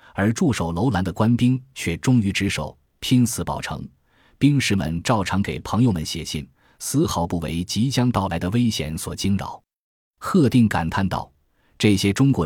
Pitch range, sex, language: 85-120 Hz, male, Chinese